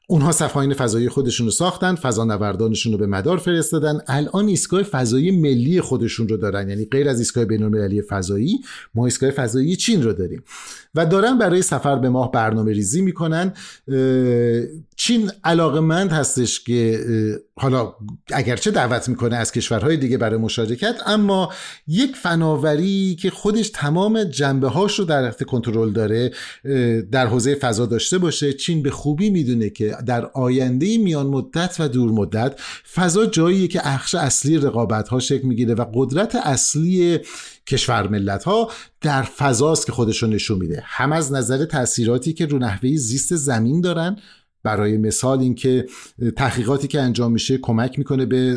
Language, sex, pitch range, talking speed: Persian, male, 115-160 Hz, 150 wpm